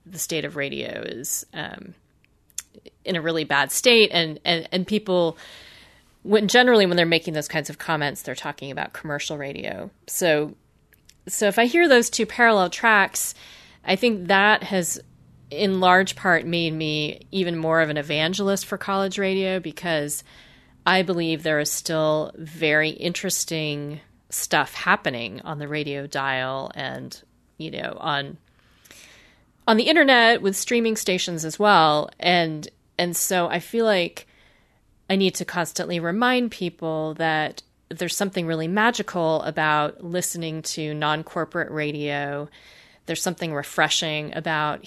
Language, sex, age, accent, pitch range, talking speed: English, female, 30-49, American, 155-185 Hz, 145 wpm